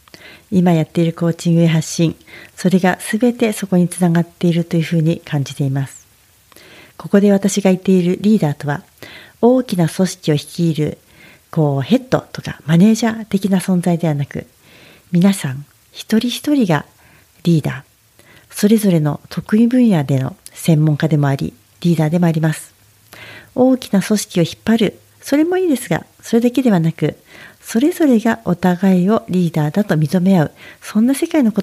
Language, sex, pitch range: Japanese, female, 160-215 Hz